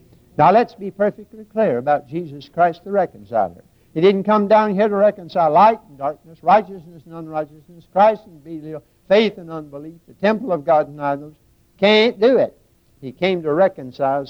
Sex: male